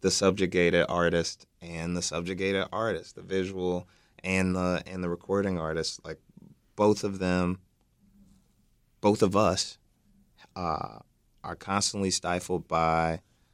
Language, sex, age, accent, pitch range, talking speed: English, male, 30-49, American, 85-105 Hz, 120 wpm